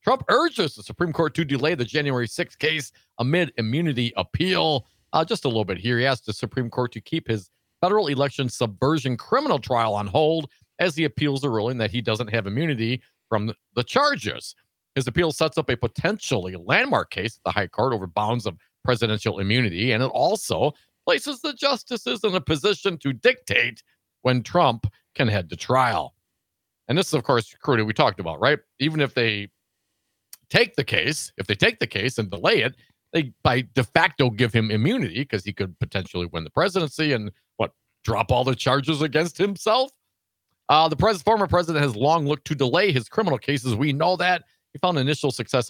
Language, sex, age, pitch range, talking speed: English, male, 40-59, 115-155 Hz, 195 wpm